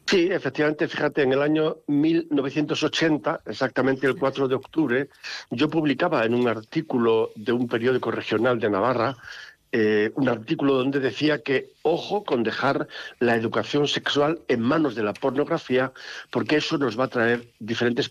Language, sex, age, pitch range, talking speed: Spanish, male, 60-79, 115-145 Hz, 155 wpm